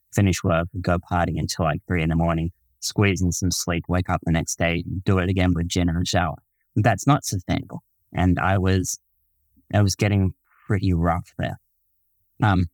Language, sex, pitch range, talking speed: English, male, 85-100 Hz, 190 wpm